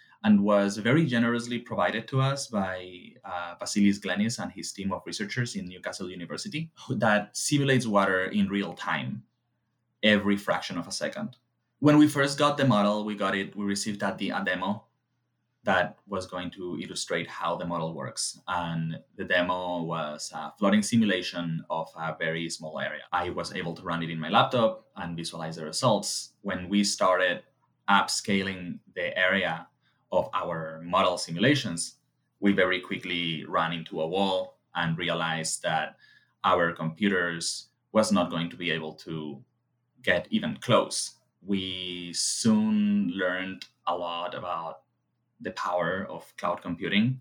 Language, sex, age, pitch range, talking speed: English, male, 20-39, 85-120 Hz, 155 wpm